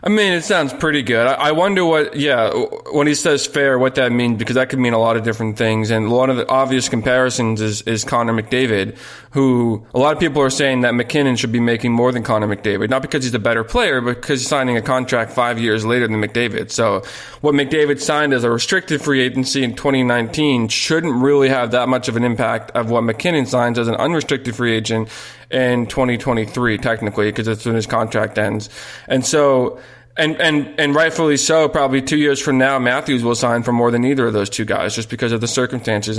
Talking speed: 220 wpm